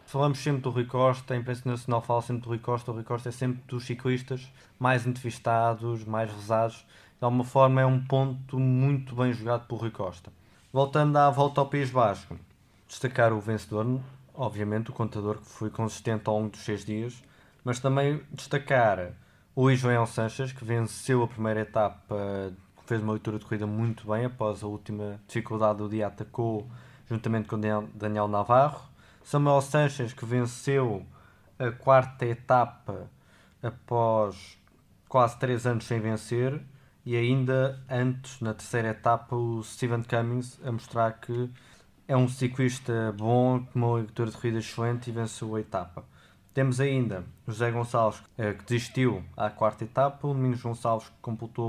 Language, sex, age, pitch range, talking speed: Portuguese, male, 20-39, 110-130 Hz, 160 wpm